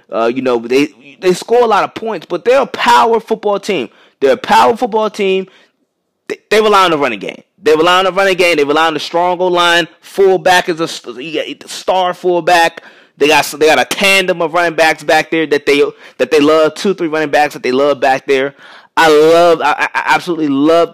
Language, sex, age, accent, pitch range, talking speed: English, male, 20-39, American, 150-195 Hz, 230 wpm